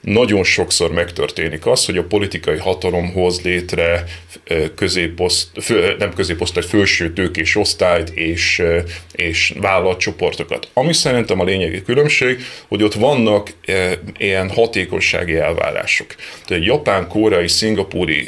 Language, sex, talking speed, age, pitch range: Hungarian, male, 110 wpm, 30-49, 85-105 Hz